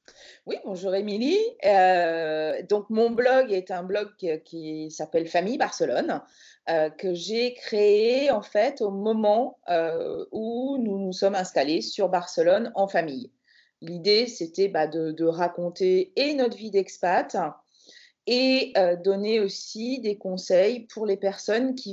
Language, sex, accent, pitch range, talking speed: French, female, French, 175-225 Hz, 130 wpm